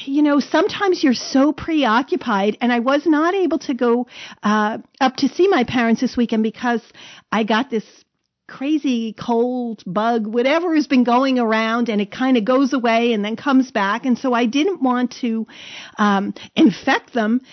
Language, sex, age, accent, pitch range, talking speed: English, female, 50-69, American, 230-300 Hz, 180 wpm